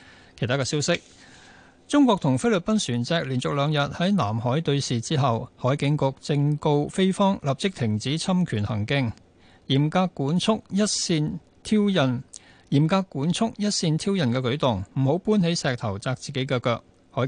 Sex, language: male, Chinese